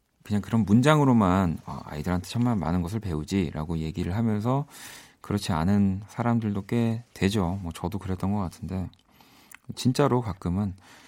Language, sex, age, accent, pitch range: Korean, male, 40-59, native, 90-125 Hz